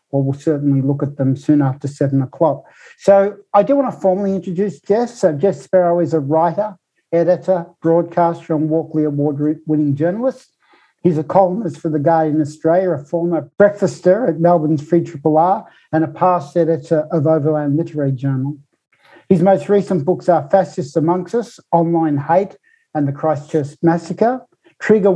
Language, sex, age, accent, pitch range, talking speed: English, male, 60-79, Australian, 155-185 Hz, 160 wpm